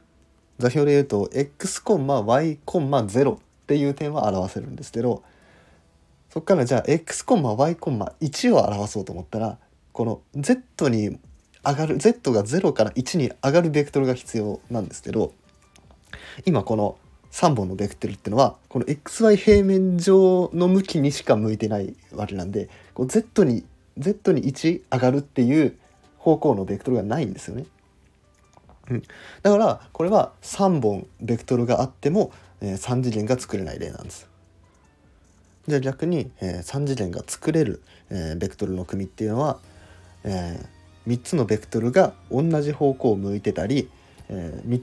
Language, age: Japanese, 20-39